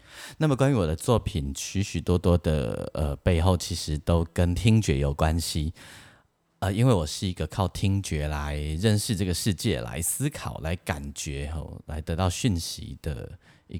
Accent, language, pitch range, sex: native, Chinese, 80-105 Hz, male